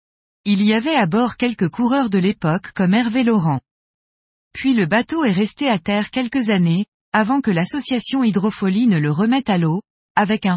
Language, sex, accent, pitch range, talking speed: French, female, French, 185-245 Hz, 180 wpm